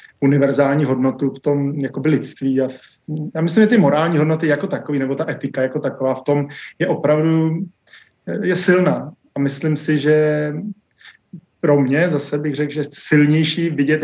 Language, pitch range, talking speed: Czech, 135-150 Hz, 165 wpm